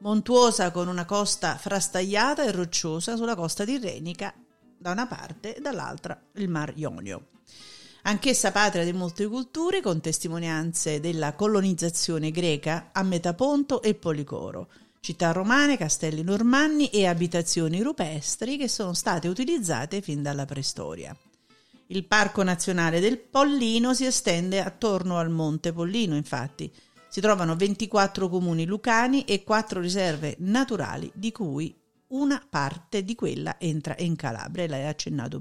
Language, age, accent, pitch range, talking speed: Italian, 50-69, native, 165-215 Hz, 130 wpm